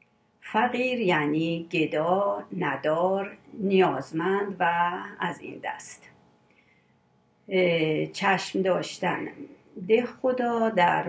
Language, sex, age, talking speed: Persian, female, 50-69, 75 wpm